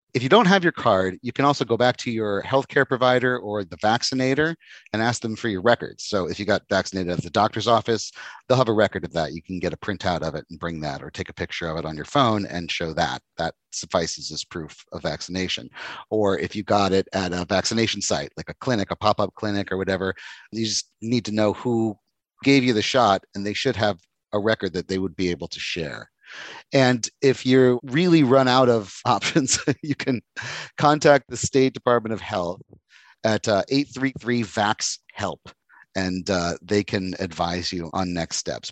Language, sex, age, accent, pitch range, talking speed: English, male, 30-49, American, 95-125 Hz, 210 wpm